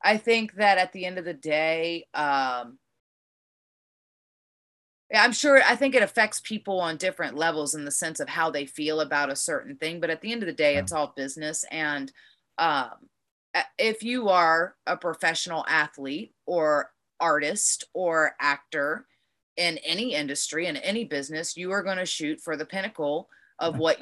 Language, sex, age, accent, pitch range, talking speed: English, female, 30-49, American, 150-190 Hz, 170 wpm